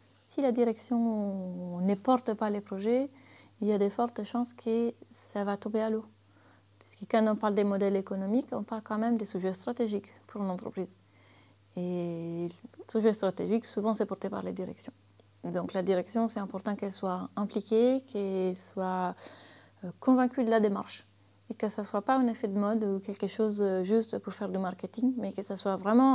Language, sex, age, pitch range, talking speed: French, female, 30-49, 190-230 Hz, 195 wpm